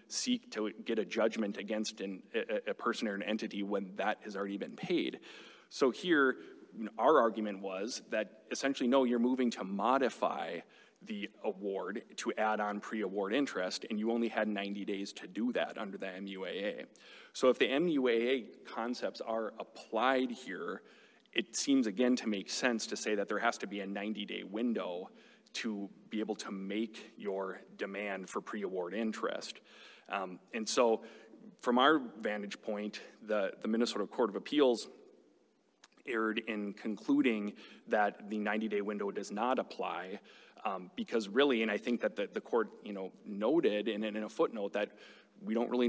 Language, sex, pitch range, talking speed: English, male, 100-120 Hz, 165 wpm